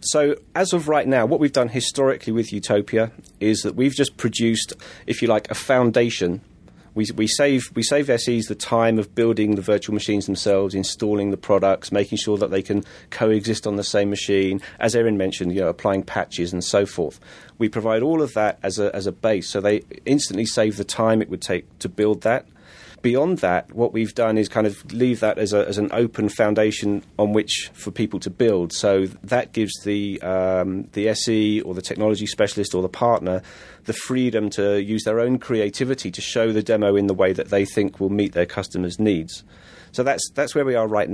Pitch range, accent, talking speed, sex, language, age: 100-115 Hz, British, 210 wpm, male, English, 30-49